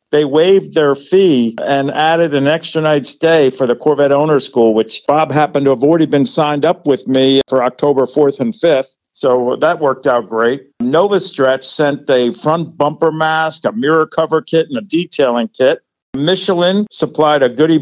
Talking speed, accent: 185 wpm, American